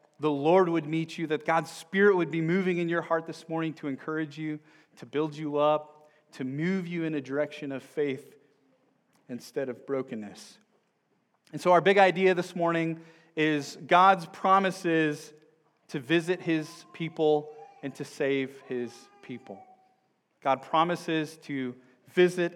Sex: male